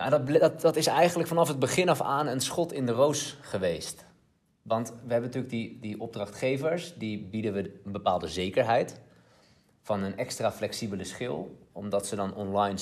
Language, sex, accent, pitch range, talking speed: Dutch, male, Dutch, 100-130 Hz, 175 wpm